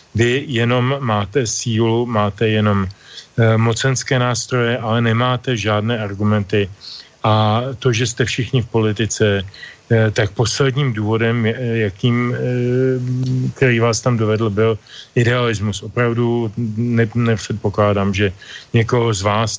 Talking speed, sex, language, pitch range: 105 wpm, male, Slovak, 105-120 Hz